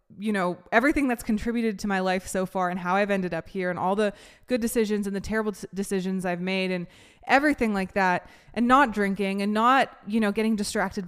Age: 20-39